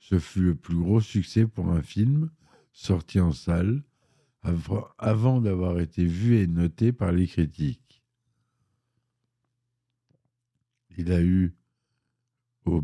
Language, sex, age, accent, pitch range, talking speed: French, male, 60-79, French, 80-120 Hz, 115 wpm